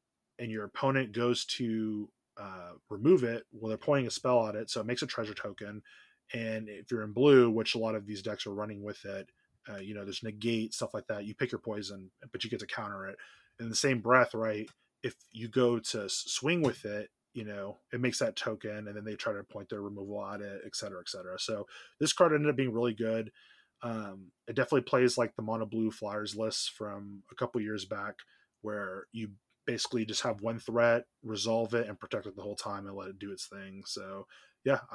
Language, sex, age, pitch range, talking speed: English, male, 20-39, 105-120 Hz, 225 wpm